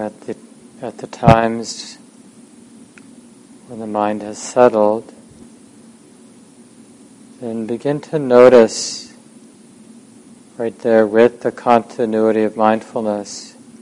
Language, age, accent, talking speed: English, 50-69, American, 90 wpm